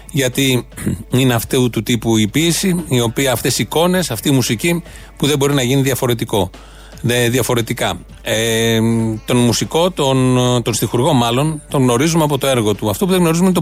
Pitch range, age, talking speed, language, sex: 120-150 Hz, 30-49, 170 wpm, Greek, male